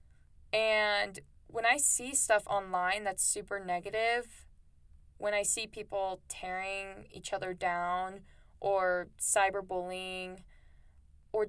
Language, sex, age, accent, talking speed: English, female, 20-39, American, 105 wpm